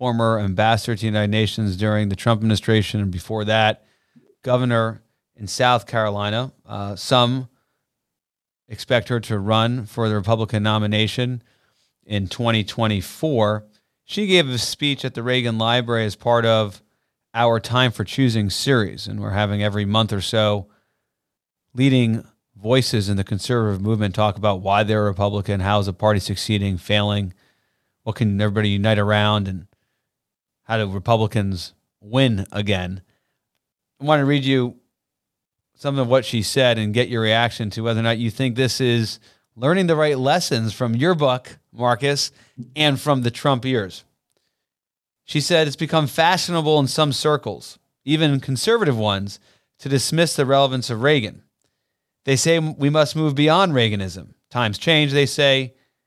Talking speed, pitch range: 150 wpm, 105-135 Hz